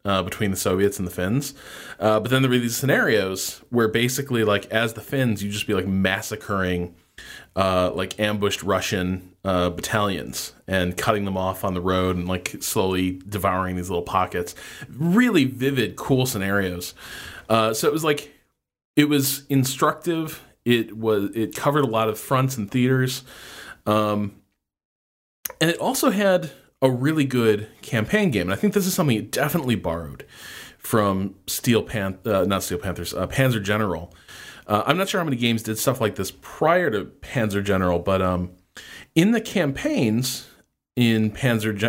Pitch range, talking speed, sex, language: 95-135 Hz, 170 wpm, male, English